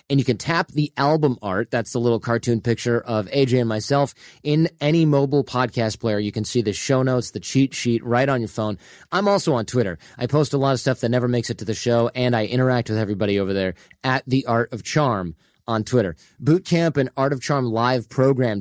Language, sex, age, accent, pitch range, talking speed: English, male, 30-49, American, 110-135 Hz, 230 wpm